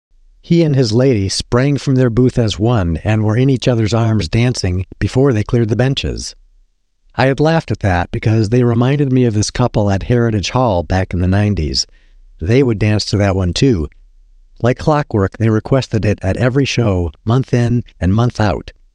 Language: English